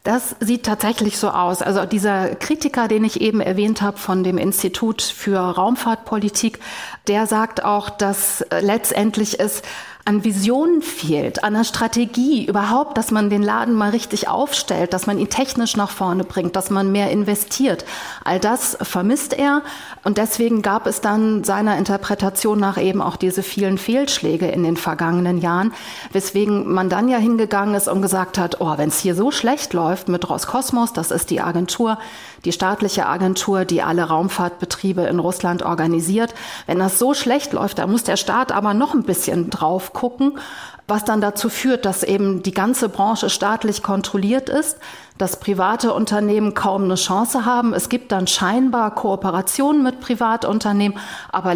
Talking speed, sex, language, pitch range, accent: 165 wpm, female, German, 185-230 Hz, German